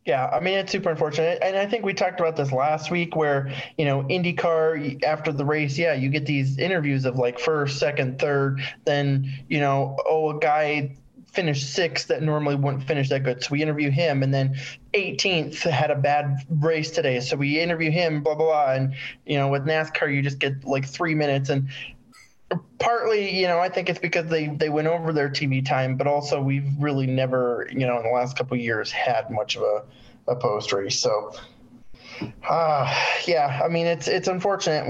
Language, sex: English, male